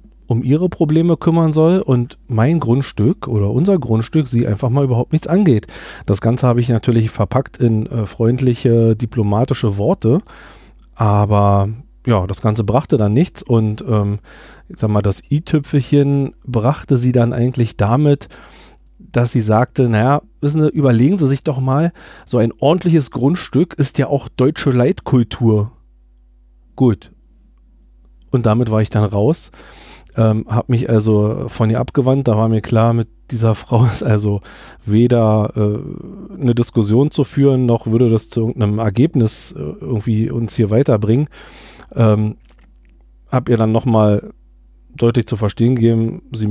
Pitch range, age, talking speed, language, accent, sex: 110-130 Hz, 40-59, 150 wpm, German, German, male